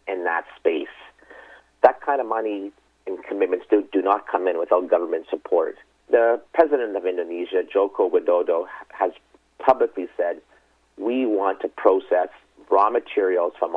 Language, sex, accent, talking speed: English, male, American, 145 wpm